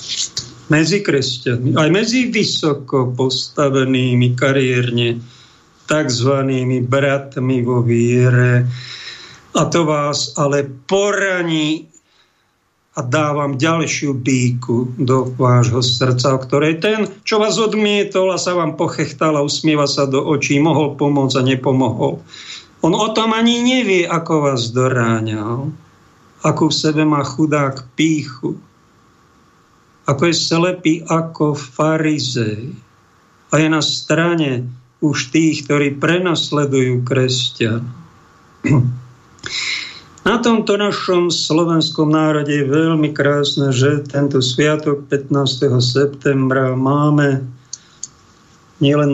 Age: 50-69